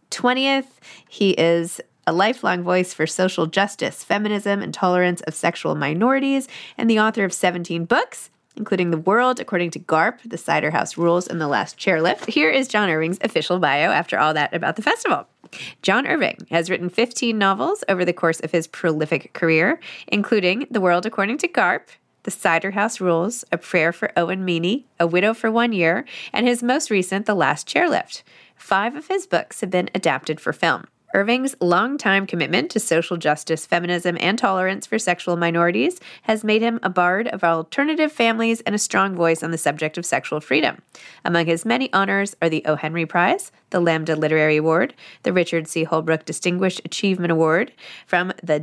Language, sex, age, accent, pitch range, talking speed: English, female, 20-39, American, 165-220 Hz, 185 wpm